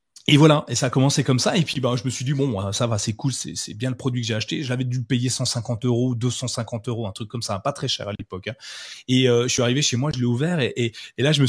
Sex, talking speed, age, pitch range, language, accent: male, 325 wpm, 20-39, 120-150 Hz, French, French